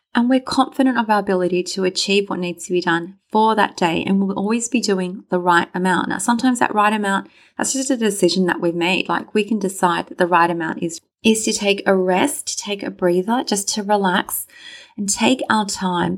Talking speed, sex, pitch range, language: 225 wpm, female, 185-230 Hz, English